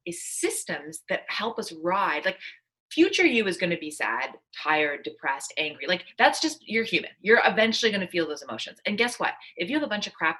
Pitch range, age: 160-225 Hz, 30-49